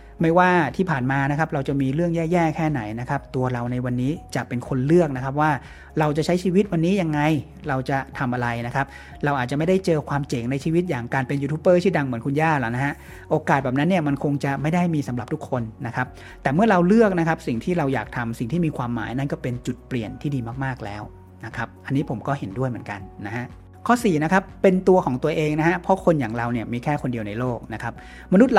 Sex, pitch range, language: male, 125-165 Hz, Thai